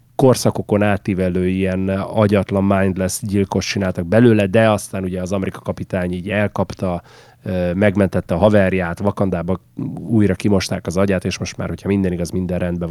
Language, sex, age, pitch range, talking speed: Hungarian, male, 30-49, 95-120 Hz, 150 wpm